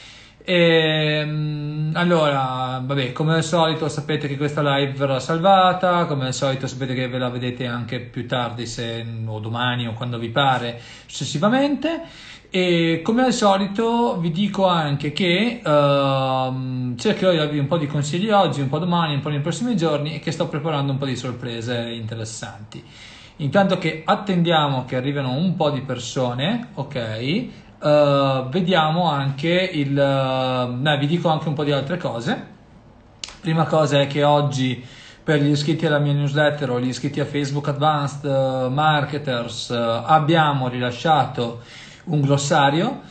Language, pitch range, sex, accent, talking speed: Italian, 130-165 Hz, male, native, 150 wpm